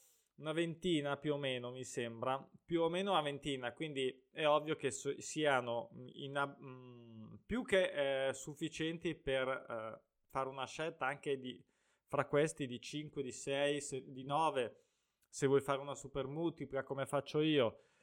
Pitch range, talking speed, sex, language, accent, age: 130-155 Hz, 150 wpm, male, Italian, native, 20-39